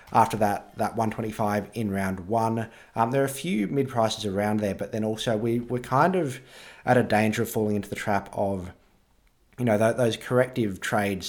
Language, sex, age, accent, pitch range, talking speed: English, male, 30-49, Australian, 100-115 Hz, 195 wpm